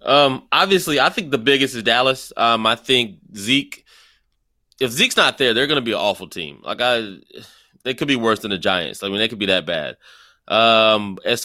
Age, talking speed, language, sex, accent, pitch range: 20-39, 215 wpm, English, male, American, 115-140 Hz